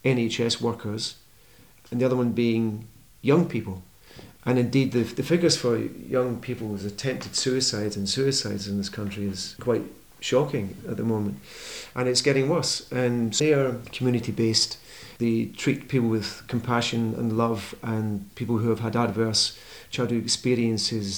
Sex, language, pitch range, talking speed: male, English, 110-125 Hz, 155 wpm